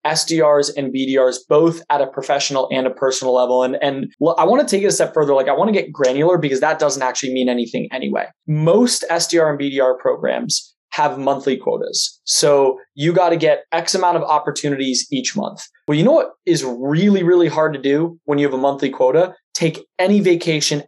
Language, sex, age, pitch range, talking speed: English, male, 20-39, 145-195 Hz, 205 wpm